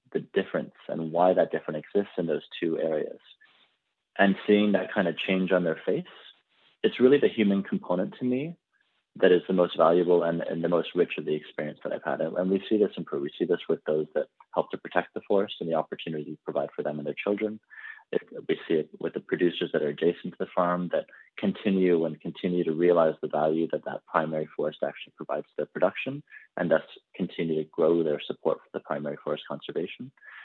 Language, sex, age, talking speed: English, male, 30-49, 215 wpm